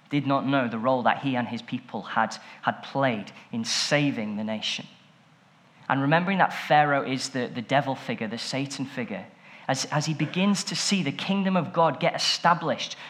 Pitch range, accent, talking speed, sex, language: 145-195 Hz, British, 190 wpm, male, English